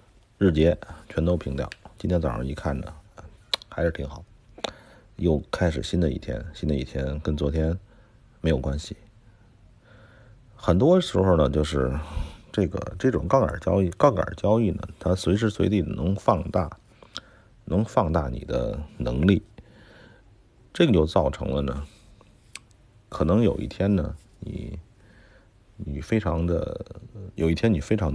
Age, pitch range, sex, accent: 50-69, 80-105 Hz, male, native